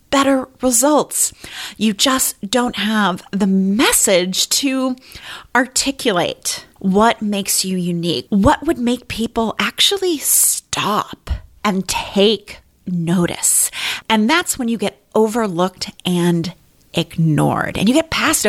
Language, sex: English, female